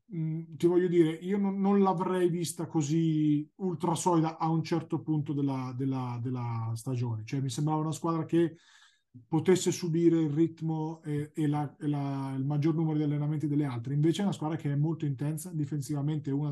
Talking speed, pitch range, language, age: 185 wpm, 140-170 Hz, Italian, 30-49